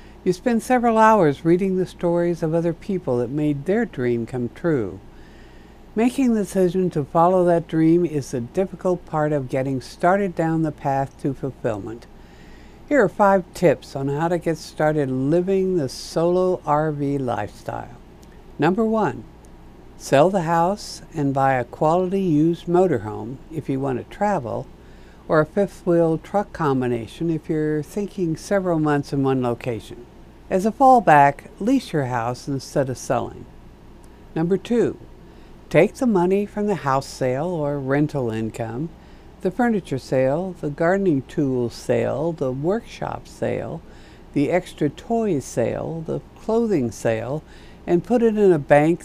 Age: 60-79